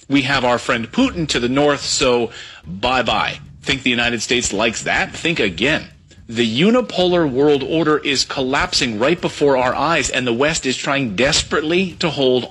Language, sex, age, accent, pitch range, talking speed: English, male, 40-59, American, 120-165 Hz, 175 wpm